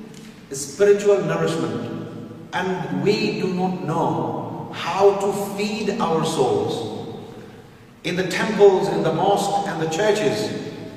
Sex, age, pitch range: male, 50-69, 155-215 Hz